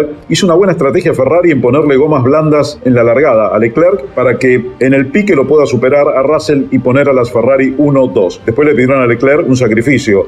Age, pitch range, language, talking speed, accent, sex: 40-59, 130-155 Hz, Spanish, 215 wpm, Argentinian, male